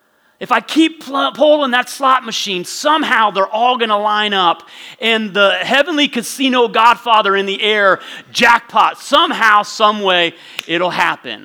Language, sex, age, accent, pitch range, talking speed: English, male, 30-49, American, 160-250 Hz, 150 wpm